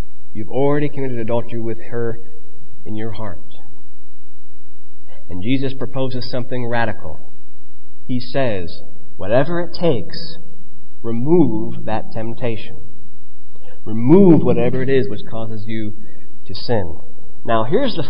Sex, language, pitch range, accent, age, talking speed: male, English, 100-130 Hz, American, 30-49, 115 wpm